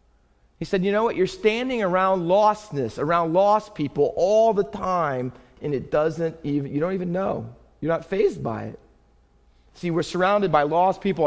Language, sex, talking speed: English, male, 180 wpm